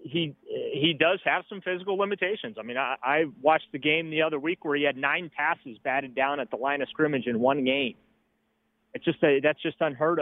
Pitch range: 140-165 Hz